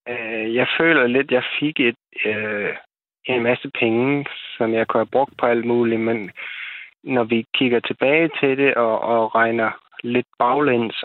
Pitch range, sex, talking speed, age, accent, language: 115-130 Hz, male, 170 wpm, 20-39, native, Danish